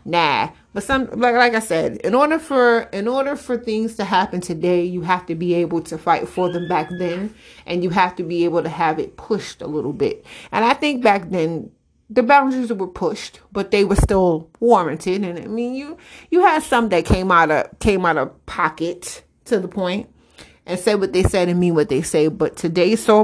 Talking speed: 220 wpm